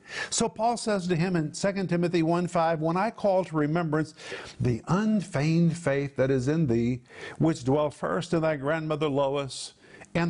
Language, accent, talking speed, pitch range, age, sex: English, American, 170 wpm, 140-175 Hz, 50-69, male